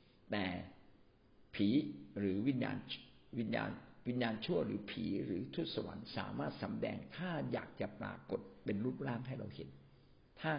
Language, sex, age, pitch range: Thai, male, 60-79, 105-130 Hz